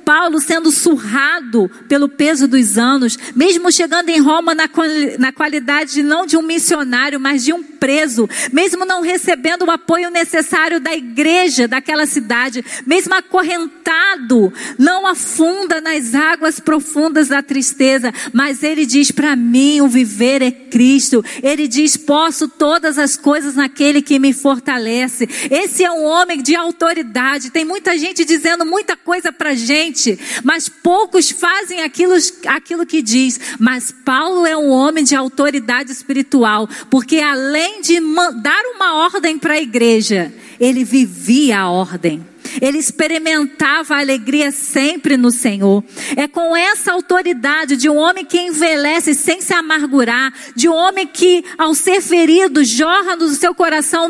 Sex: female